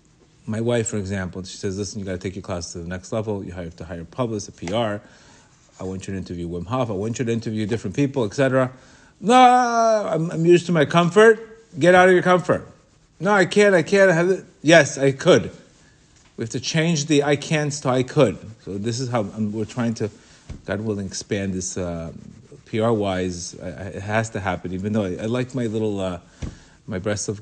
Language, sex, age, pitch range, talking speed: English, male, 30-49, 95-135 Hz, 220 wpm